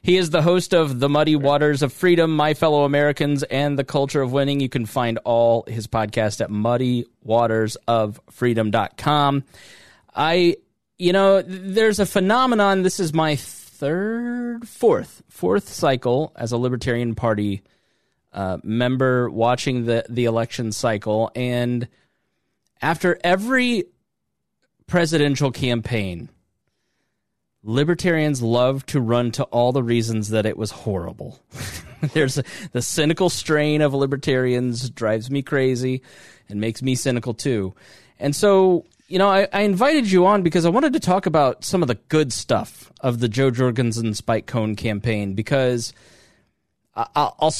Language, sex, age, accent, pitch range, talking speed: English, male, 30-49, American, 115-160 Hz, 140 wpm